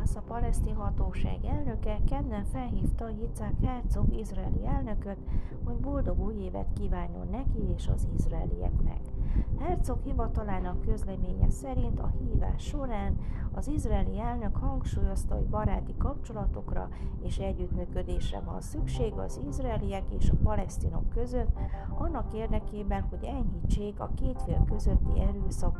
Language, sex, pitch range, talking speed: Hungarian, female, 80-95 Hz, 120 wpm